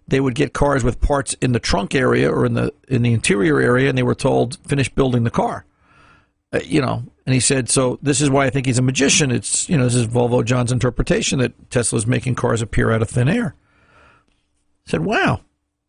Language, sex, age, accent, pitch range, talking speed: English, male, 50-69, American, 115-150 Hz, 225 wpm